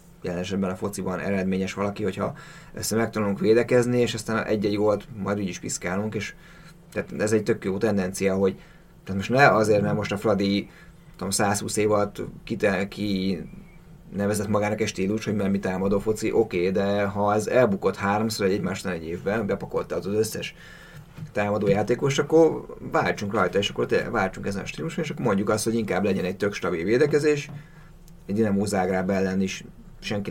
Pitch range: 100-120 Hz